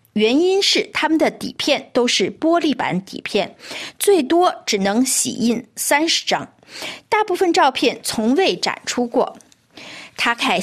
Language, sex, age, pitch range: Chinese, female, 50-69, 225-335 Hz